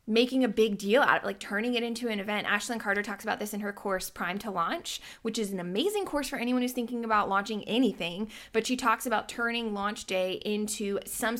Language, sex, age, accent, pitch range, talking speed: English, female, 20-39, American, 210-255 Hz, 230 wpm